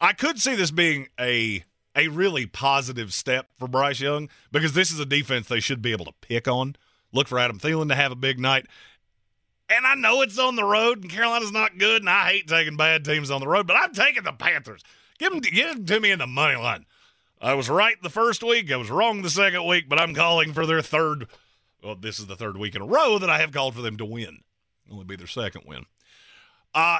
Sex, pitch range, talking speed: male, 125-180 Hz, 245 wpm